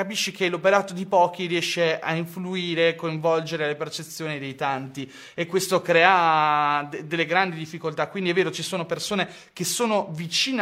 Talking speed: 165 wpm